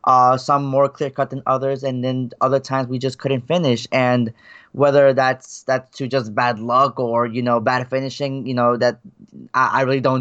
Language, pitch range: English, 130-140 Hz